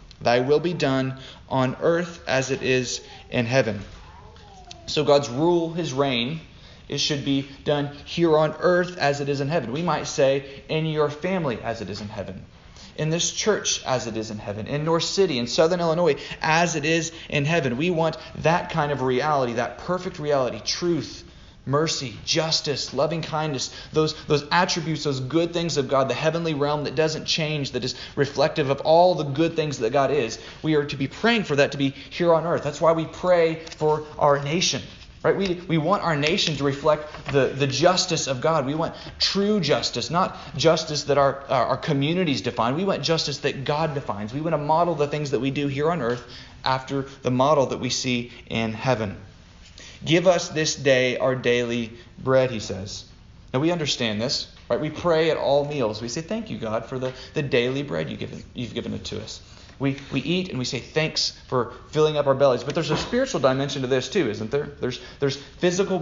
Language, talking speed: English, 205 wpm